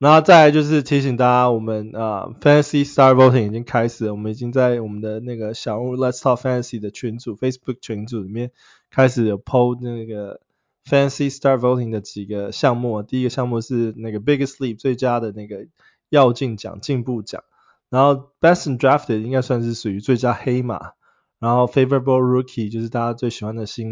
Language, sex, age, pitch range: Chinese, male, 20-39, 110-135 Hz